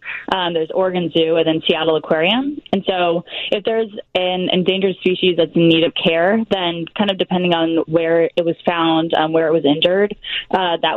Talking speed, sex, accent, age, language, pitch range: 195 wpm, female, American, 20-39, English, 160-190 Hz